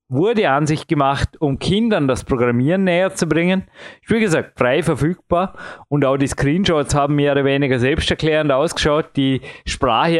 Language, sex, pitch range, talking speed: German, male, 140-175 Hz, 160 wpm